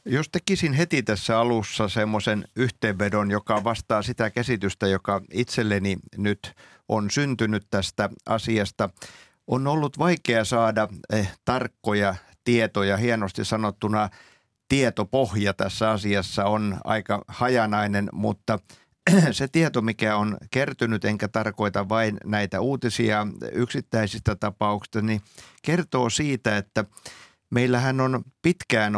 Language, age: Finnish, 50-69